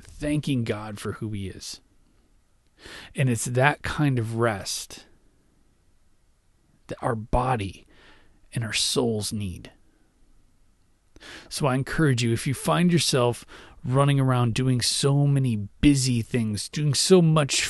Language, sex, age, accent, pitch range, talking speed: English, male, 30-49, American, 105-145 Hz, 125 wpm